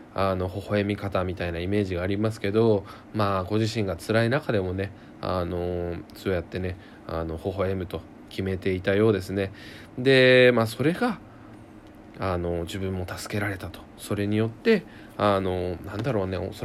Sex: male